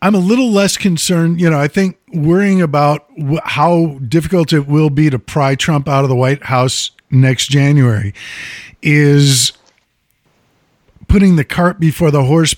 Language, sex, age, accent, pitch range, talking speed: English, male, 50-69, American, 130-165 Hz, 155 wpm